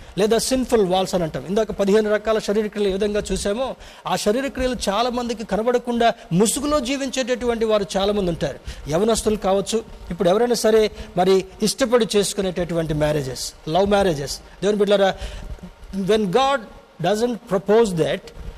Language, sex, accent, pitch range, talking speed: Telugu, male, native, 190-235 Hz, 125 wpm